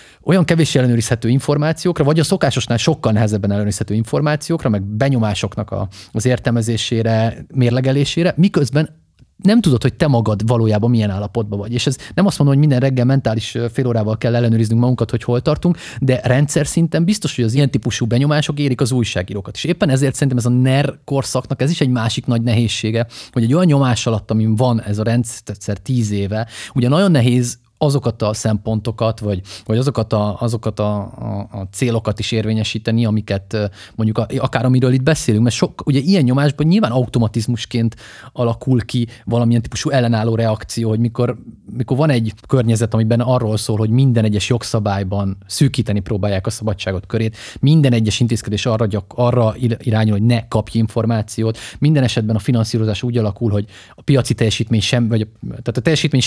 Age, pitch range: 30-49, 110-130 Hz